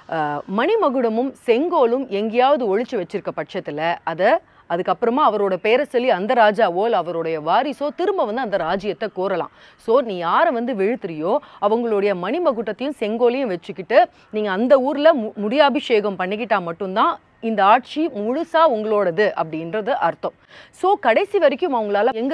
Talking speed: 125 wpm